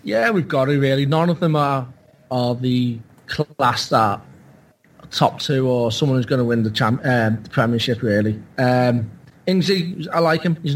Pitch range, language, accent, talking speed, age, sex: 130-160 Hz, English, British, 190 wpm, 20-39, male